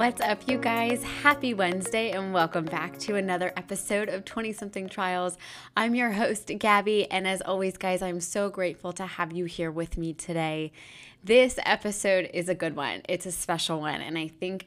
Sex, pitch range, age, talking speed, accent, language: female, 165-210 Hz, 20-39, 190 wpm, American, English